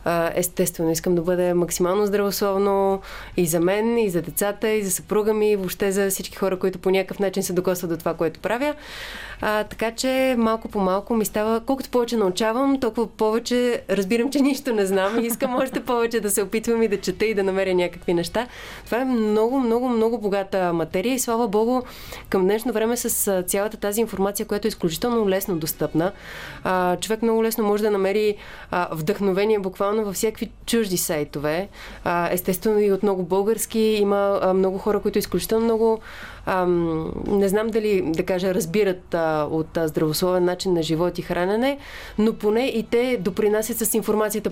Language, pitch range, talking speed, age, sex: Bulgarian, 185-225 Hz, 180 wpm, 20-39, female